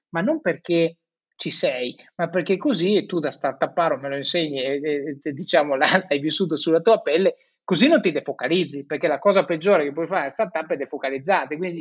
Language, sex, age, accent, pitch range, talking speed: Italian, male, 30-49, native, 155-205 Hz, 210 wpm